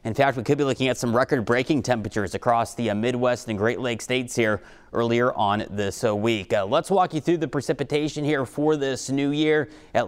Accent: American